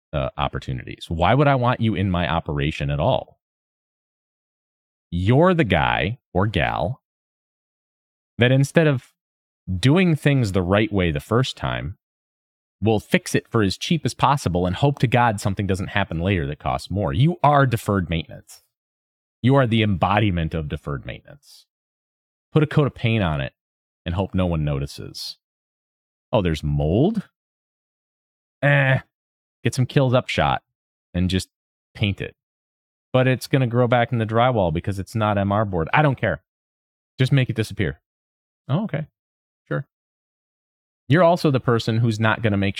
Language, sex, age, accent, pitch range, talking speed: English, male, 30-49, American, 75-125 Hz, 165 wpm